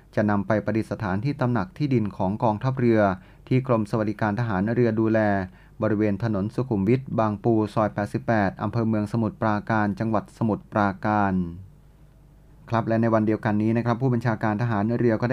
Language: Thai